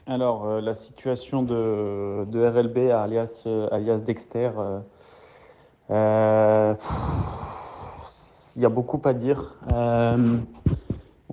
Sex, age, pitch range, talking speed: male, 20-39, 110-125 Hz, 105 wpm